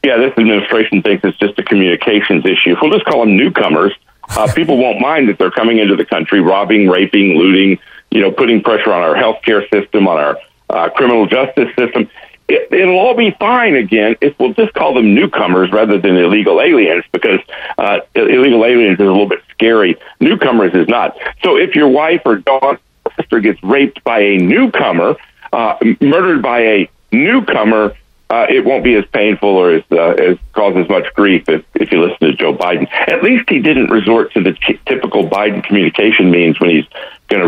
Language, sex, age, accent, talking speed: English, male, 50-69, American, 190 wpm